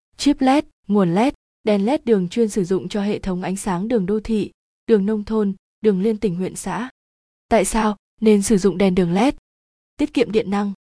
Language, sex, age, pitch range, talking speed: Vietnamese, female, 20-39, 190-230 Hz, 210 wpm